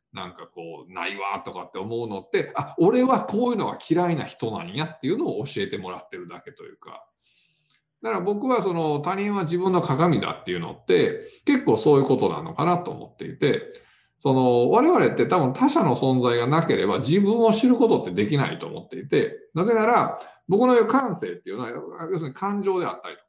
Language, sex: Japanese, male